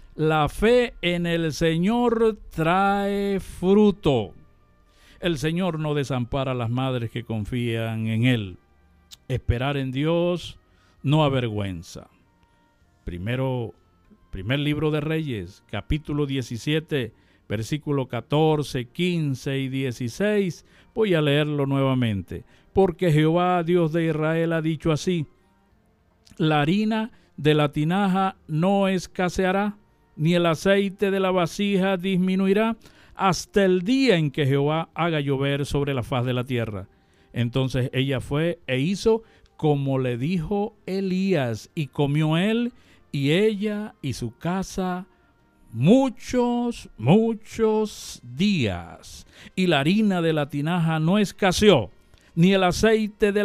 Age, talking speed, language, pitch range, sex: 50-69, 120 wpm, Spanish, 125-190 Hz, male